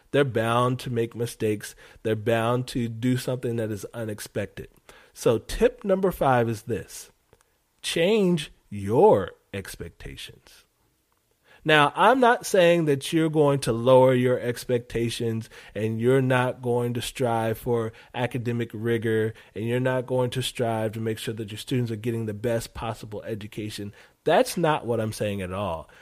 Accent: American